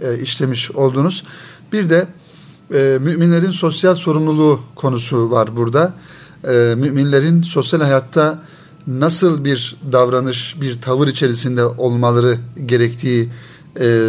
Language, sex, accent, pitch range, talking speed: Turkish, male, native, 130-165 Hz, 100 wpm